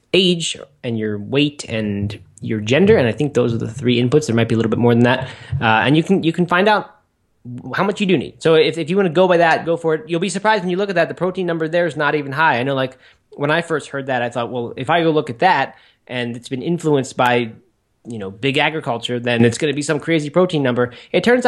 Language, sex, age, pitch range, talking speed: English, male, 20-39, 115-155 Hz, 285 wpm